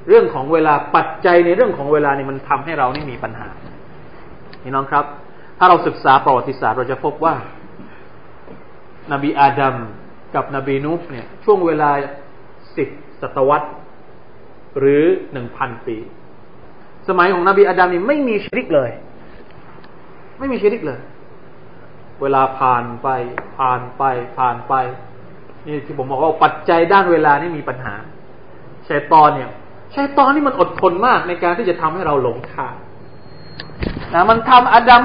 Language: Thai